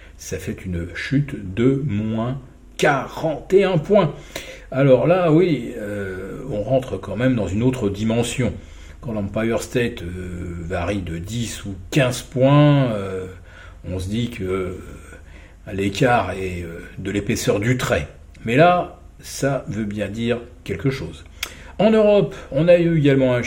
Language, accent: French, French